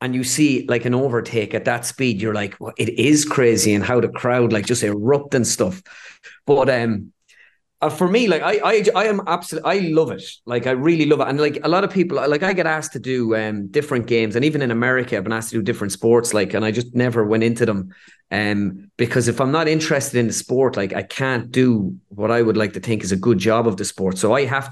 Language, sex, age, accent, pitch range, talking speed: English, male, 30-49, Irish, 110-130 Hz, 255 wpm